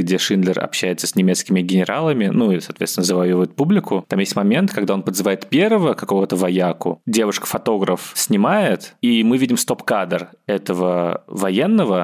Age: 20-39